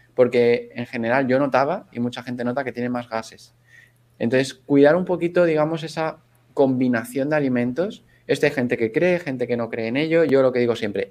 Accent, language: Spanish, English